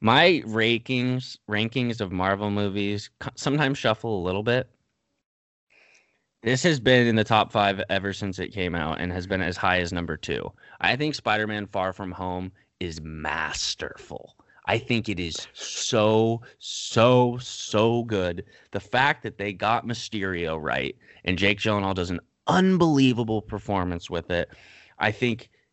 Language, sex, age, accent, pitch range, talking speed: English, male, 20-39, American, 95-120 Hz, 150 wpm